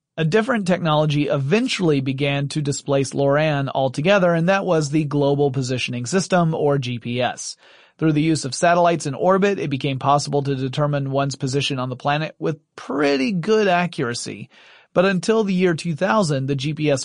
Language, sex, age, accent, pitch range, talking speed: English, male, 30-49, American, 135-170 Hz, 160 wpm